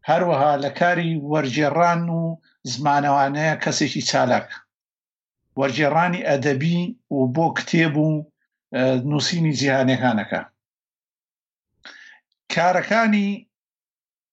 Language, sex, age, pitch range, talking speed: Arabic, male, 50-69, 145-170 Hz, 75 wpm